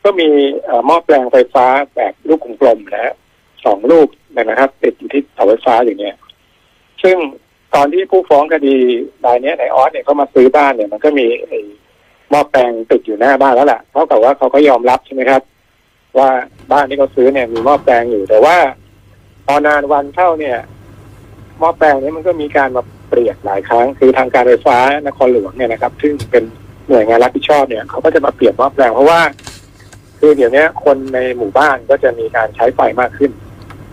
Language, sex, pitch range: Thai, male, 110-145 Hz